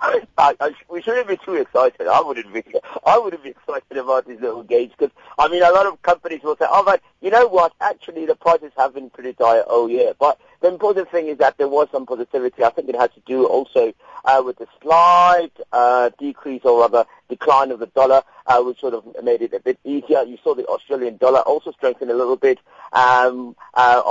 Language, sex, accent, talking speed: English, male, British, 230 wpm